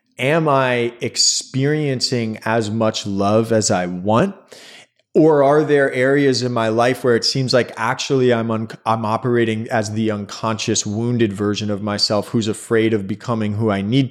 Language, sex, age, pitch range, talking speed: English, male, 30-49, 110-130 Hz, 160 wpm